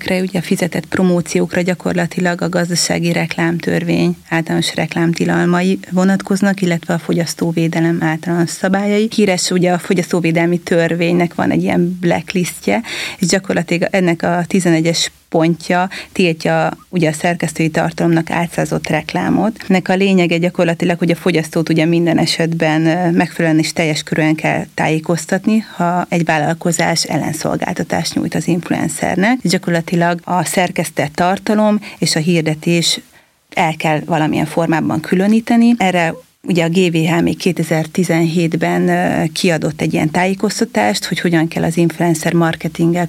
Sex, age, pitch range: female, 30-49, 165-185 Hz